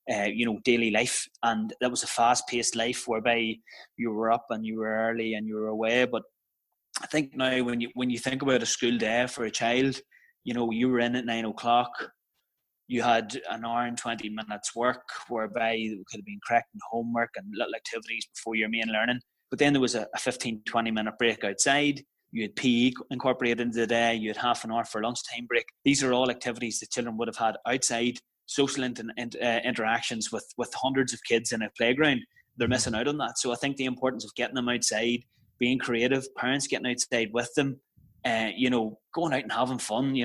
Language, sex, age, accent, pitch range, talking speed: English, male, 20-39, Irish, 115-125 Hz, 220 wpm